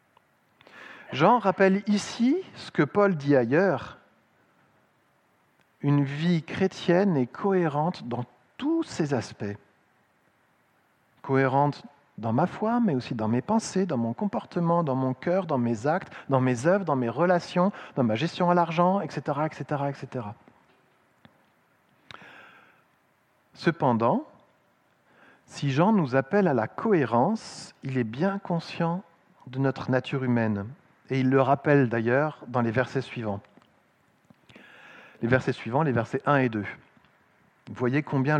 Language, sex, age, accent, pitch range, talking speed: French, male, 50-69, French, 125-170 Hz, 130 wpm